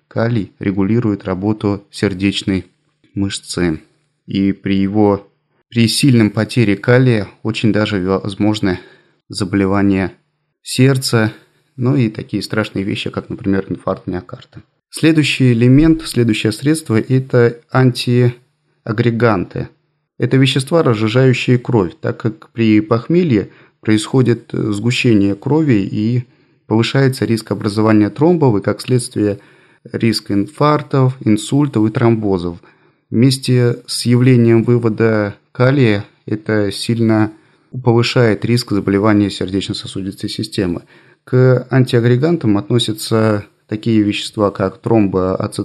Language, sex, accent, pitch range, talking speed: Russian, male, native, 105-130 Hz, 100 wpm